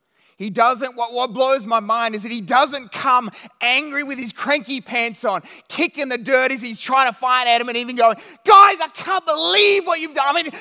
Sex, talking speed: male, 220 wpm